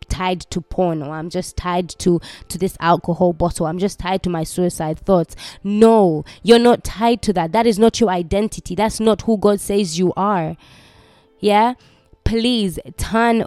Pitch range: 190-235 Hz